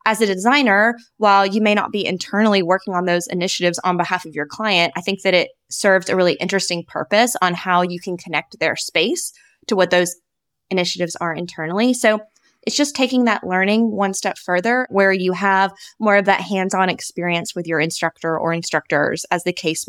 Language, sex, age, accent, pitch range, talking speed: English, female, 20-39, American, 175-205 Hz, 195 wpm